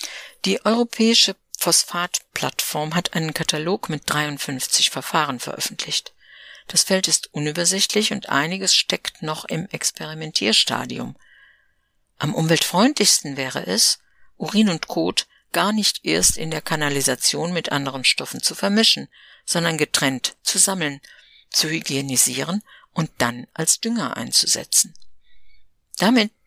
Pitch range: 145-200 Hz